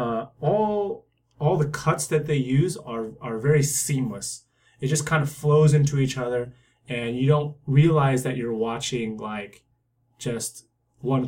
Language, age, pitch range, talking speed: English, 20-39, 120-150 Hz, 160 wpm